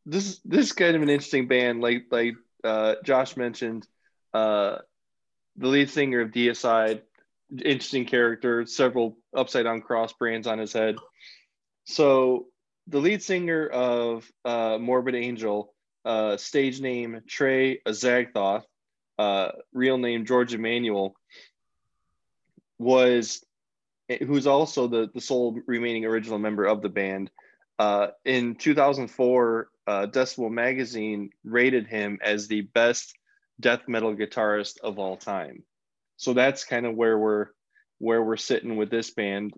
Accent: American